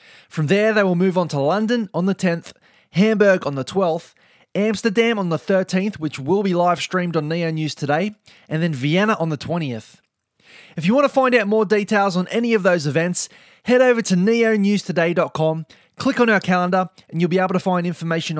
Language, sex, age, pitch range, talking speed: English, male, 20-39, 165-205 Hz, 200 wpm